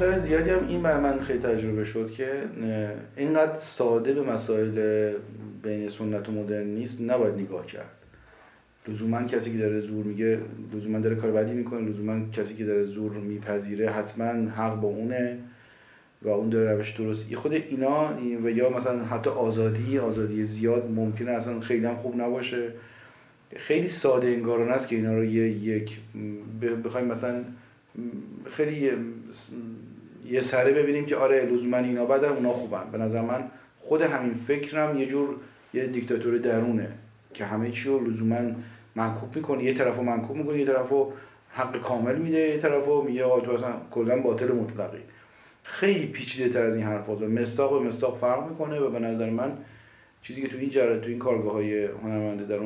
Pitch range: 110-125 Hz